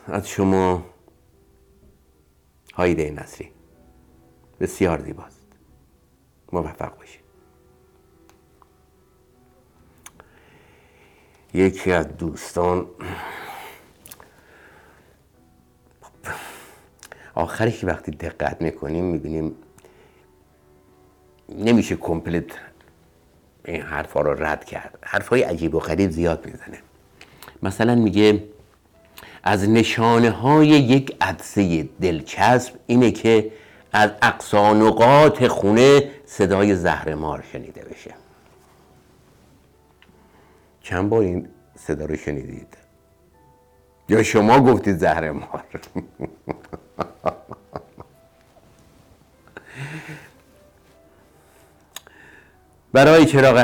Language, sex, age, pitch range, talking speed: Persian, male, 60-79, 75-110 Hz, 65 wpm